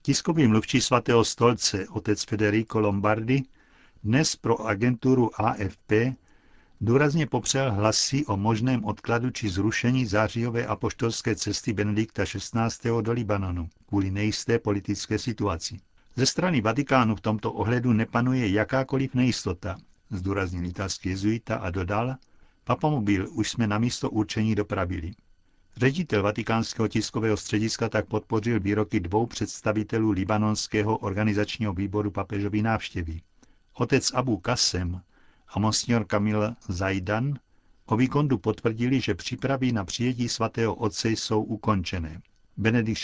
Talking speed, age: 115 wpm, 60-79